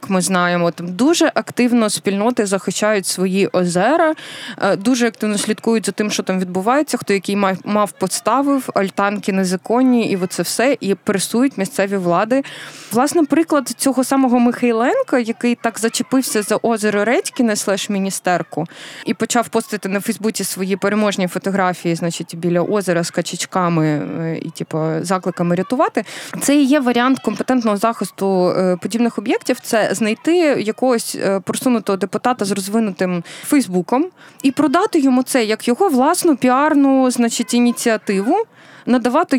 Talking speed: 135 wpm